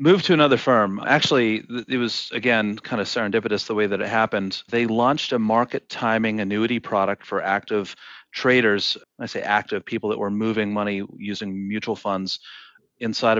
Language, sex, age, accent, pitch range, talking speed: English, male, 30-49, American, 105-130 Hz, 170 wpm